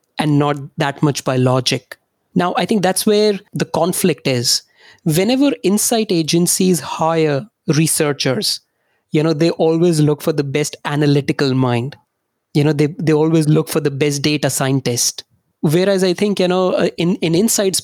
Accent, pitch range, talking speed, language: Indian, 145-170 Hz, 160 wpm, English